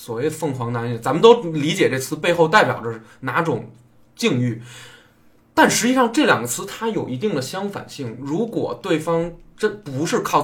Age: 20-39